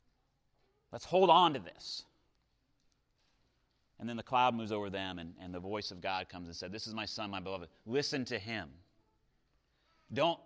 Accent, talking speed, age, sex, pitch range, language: American, 180 wpm, 30-49, male, 115-190 Hz, English